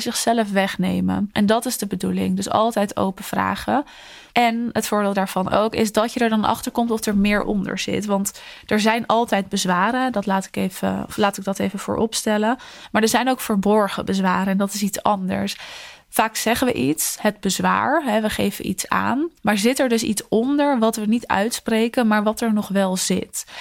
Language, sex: Dutch, female